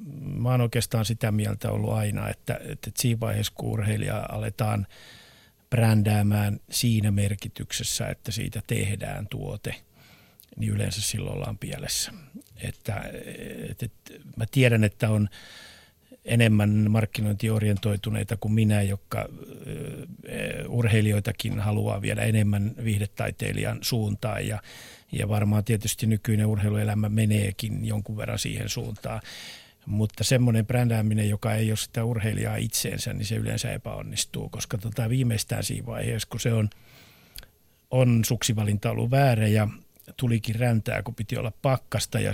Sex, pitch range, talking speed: male, 105-120 Hz, 120 wpm